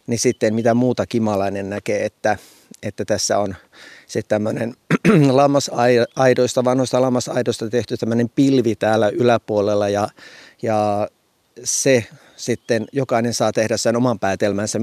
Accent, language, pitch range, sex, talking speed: native, Finnish, 105-125 Hz, male, 115 wpm